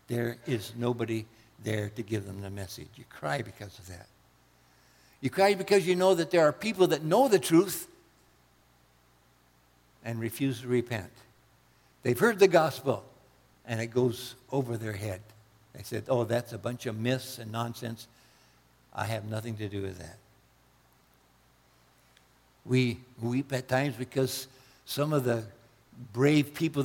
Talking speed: 150 wpm